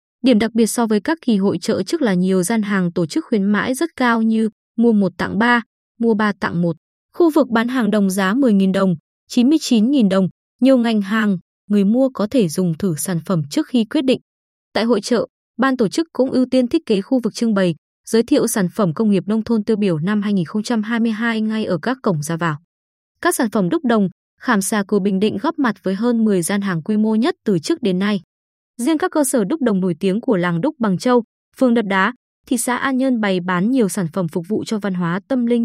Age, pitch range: 20-39, 190-245 Hz